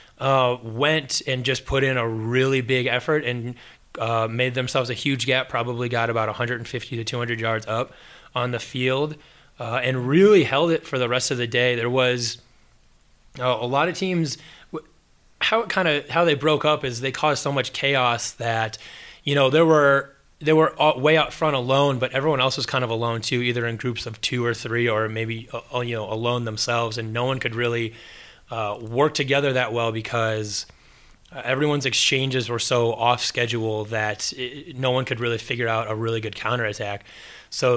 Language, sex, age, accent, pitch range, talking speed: English, male, 20-39, American, 115-135 Hz, 195 wpm